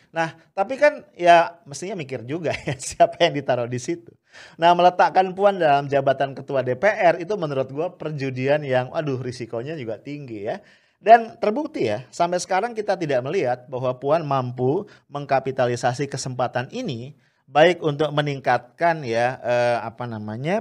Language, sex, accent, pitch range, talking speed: English, male, Indonesian, 125-165 Hz, 150 wpm